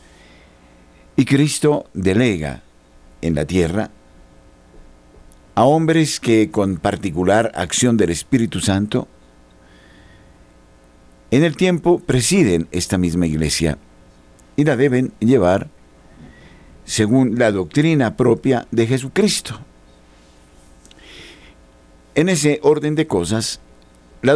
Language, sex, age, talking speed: Spanish, male, 60-79, 95 wpm